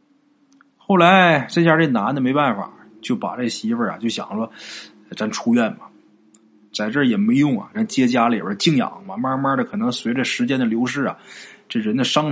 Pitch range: 165-250 Hz